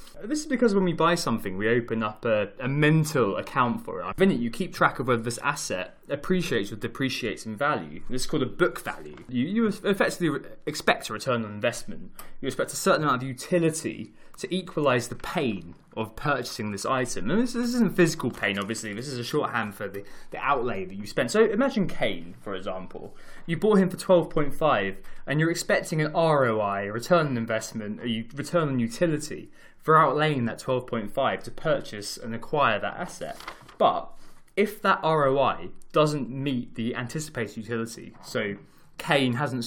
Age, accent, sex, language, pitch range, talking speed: 20-39, British, male, English, 115-160 Hz, 180 wpm